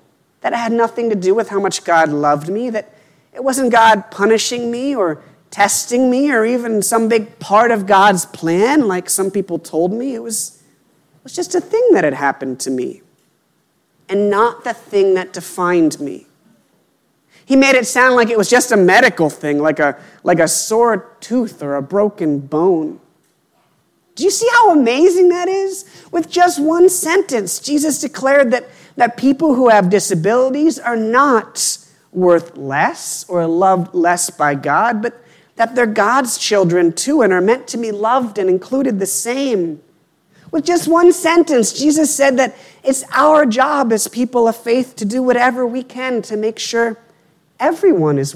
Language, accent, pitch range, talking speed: English, American, 170-255 Hz, 175 wpm